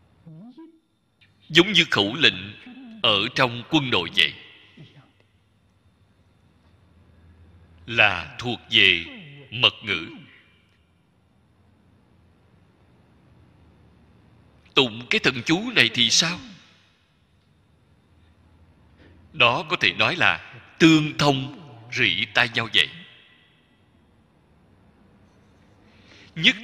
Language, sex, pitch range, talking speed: Vietnamese, male, 100-145 Hz, 75 wpm